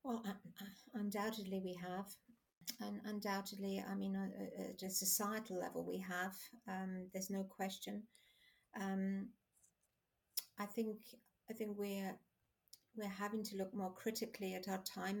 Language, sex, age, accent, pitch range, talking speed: English, female, 50-69, British, 195-225 Hz, 145 wpm